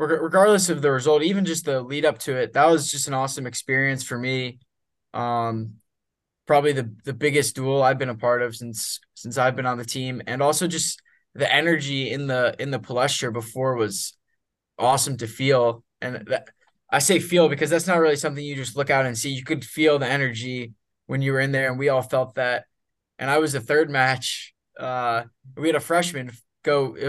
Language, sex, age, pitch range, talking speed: English, male, 20-39, 125-145 Hz, 210 wpm